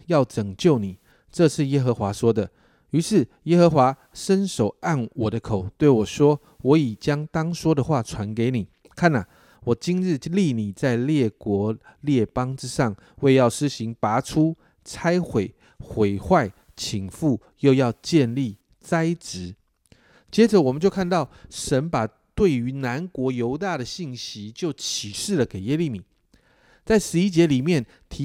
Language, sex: Chinese, male